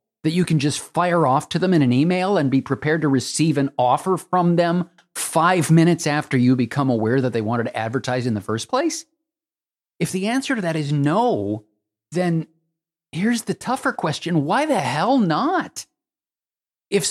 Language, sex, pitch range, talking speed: English, male, 110-165 Hz, 180 wpm